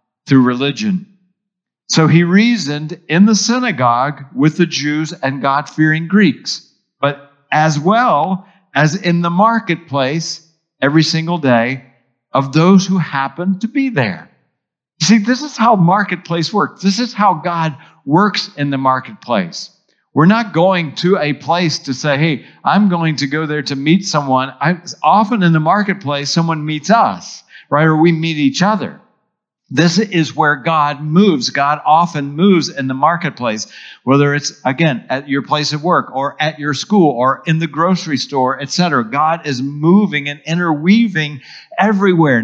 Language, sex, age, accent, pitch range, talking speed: English, male, 50-69, American, 145-185 Hz, 160 wpm